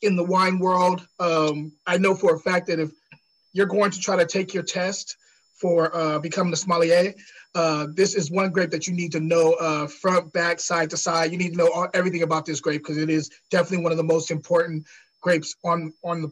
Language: English